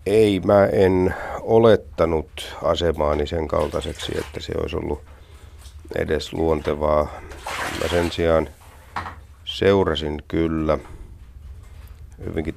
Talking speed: 90 wpm